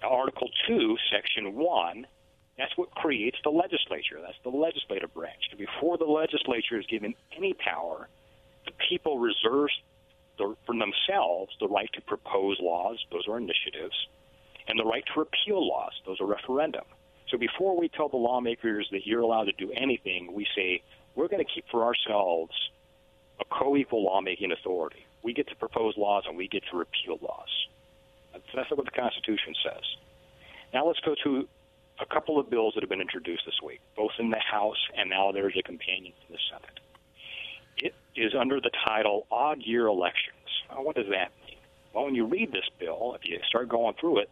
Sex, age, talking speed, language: male, 50-69, 180 wpm, English